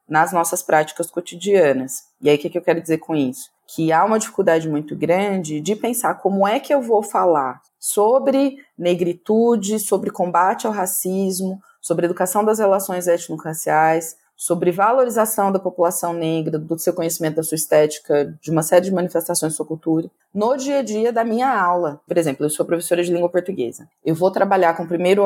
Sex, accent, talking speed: female, Brazilian, 190 wpm